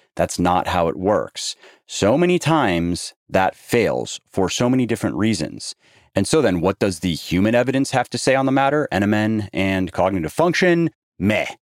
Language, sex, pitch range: English, male, 85-115 Hz